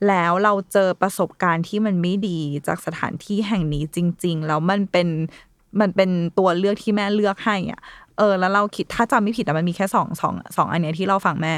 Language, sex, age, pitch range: Thai, female, 20-39, 180-225 Hz